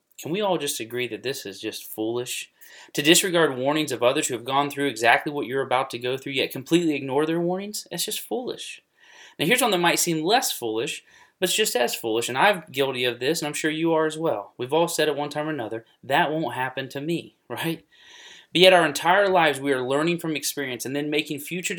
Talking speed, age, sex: 240 wpm, 30-49, male